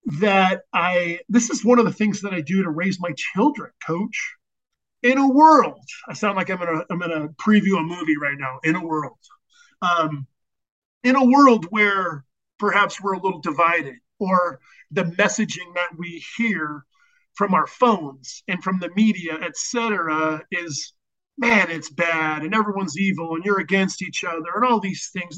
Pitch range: 165-220 Hz